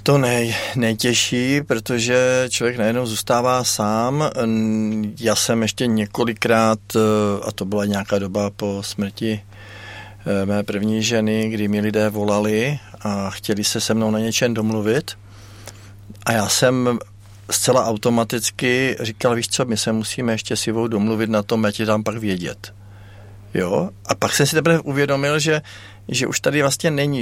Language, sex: Czech, male